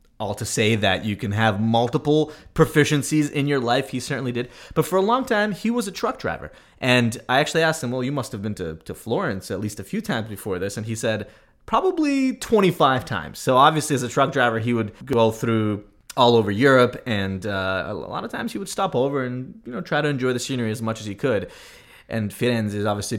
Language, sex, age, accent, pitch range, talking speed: English, male, 20-39, American, 110-150 Hz, 235 wpm